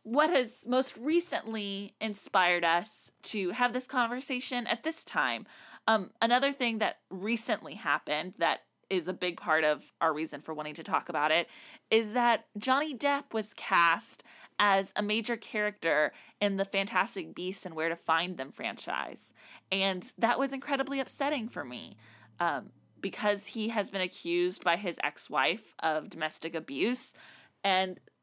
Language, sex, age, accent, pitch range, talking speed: English, female, 20-39, American, 185-250 Hz, 155 wpm